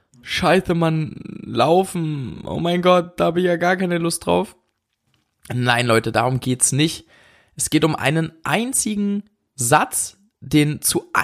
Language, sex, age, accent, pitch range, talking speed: German, male, 20-39, German, 125-170 Hz, 145 wpm